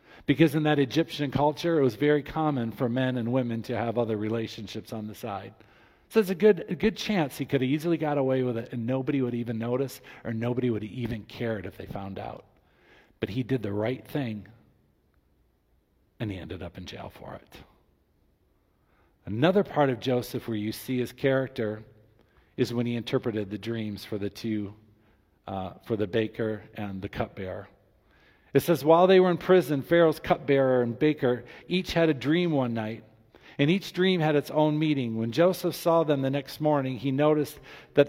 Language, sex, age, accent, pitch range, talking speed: English, male, 50-69, American, 115-150 Hz, 195 wpm